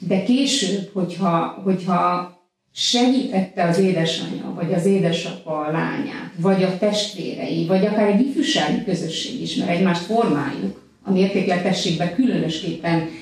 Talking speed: 125 wpm